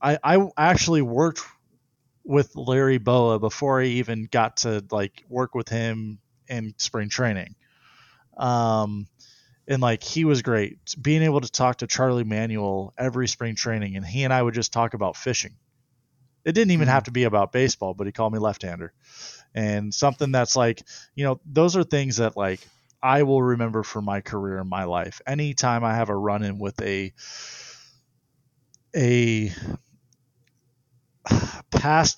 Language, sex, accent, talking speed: English, male, American, 160 wpm